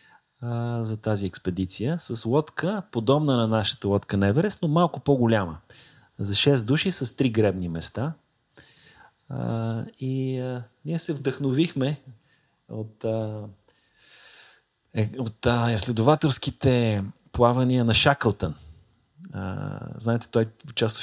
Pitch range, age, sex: 105-135 Hz, 30-49, male